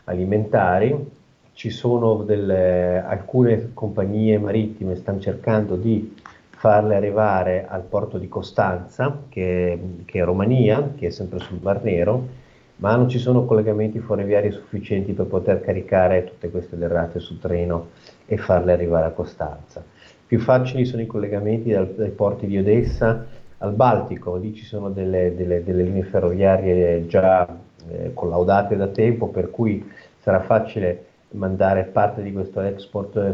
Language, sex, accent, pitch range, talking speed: Italian, male, native, 95-110 Hz, 150 wpm